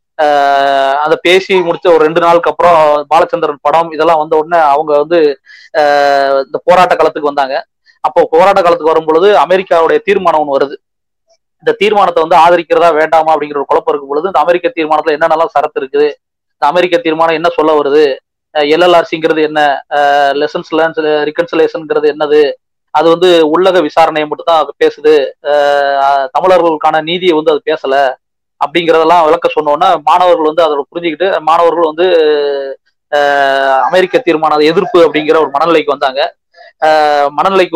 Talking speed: 135 wpm